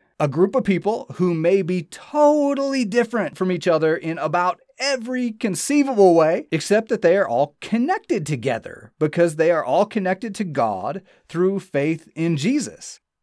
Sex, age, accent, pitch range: male, 30-49, American, 150-215 Hz